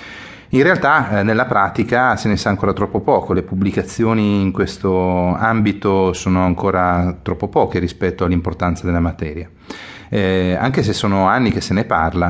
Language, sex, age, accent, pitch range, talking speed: Italian, male, 30-49, native, 90-105 Hz, 155 wpm